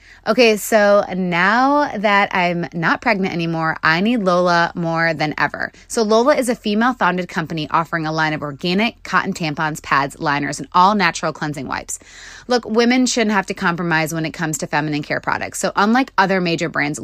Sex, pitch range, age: female, 170-225 Hz, 20-39